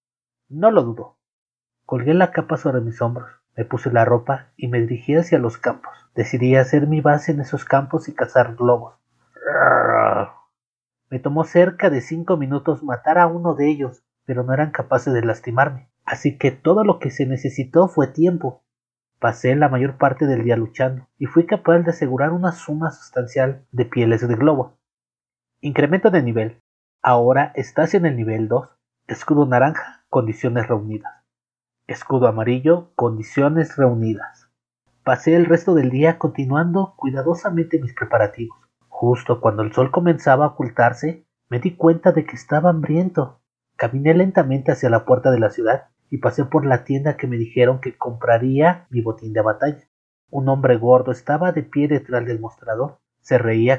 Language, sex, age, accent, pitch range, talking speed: Spanish, male, 30-49, Mexican, 120-155 Hz, 165 wpm